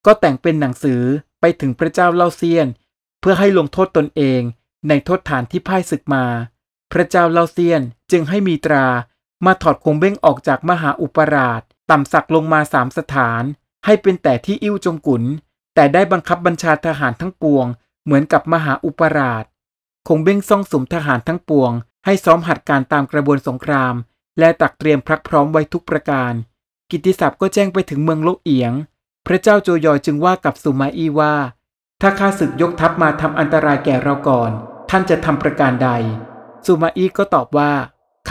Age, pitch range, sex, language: 20-39, 135-175 Hz, male, Thai